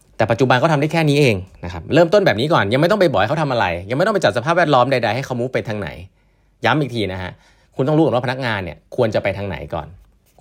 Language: Thai